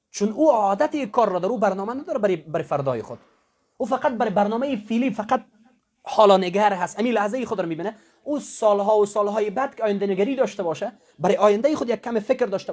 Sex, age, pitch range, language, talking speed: male, 30-49, 180-235 Hz, English, 205 wpm